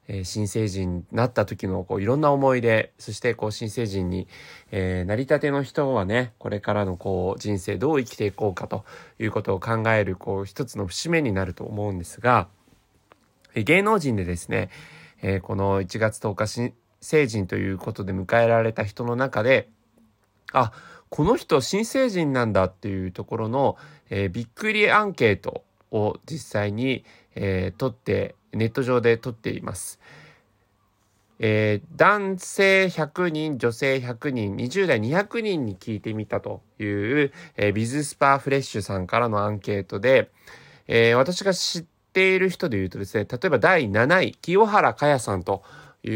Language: Japanese